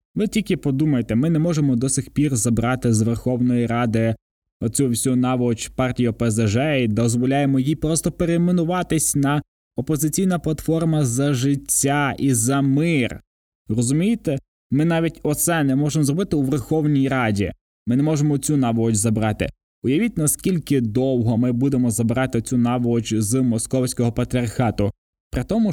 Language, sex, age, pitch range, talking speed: Ukrainian, male, 20-39, 120-155 Hz, 140 wpm